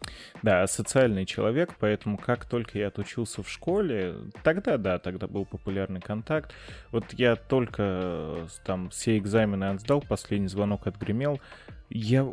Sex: male